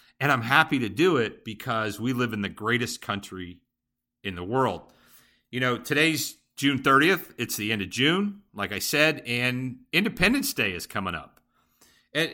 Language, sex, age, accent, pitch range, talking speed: English, male, 40-59, American, 110-150 Hz, 175 wpm